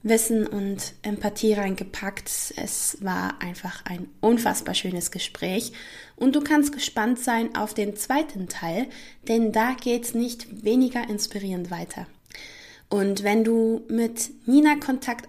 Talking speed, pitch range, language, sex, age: 130 wpm, 205-240 Hz, German, female, 20-39